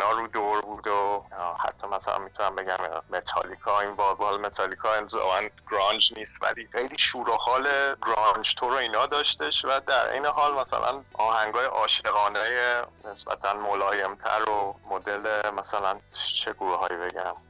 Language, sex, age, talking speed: Persian, male, 30-49, 145 wpm